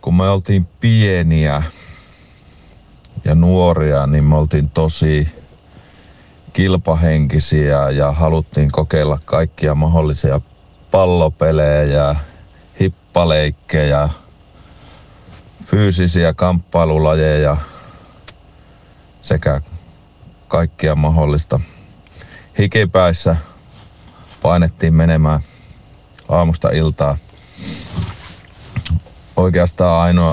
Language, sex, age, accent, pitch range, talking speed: Finnish, male, 40-59, native, 75-90 Hz, 55 wpm